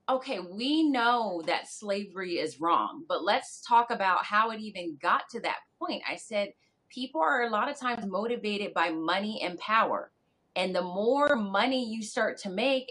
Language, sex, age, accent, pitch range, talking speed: English, female, 30-49, American, 195-255 Hz, 180 wpm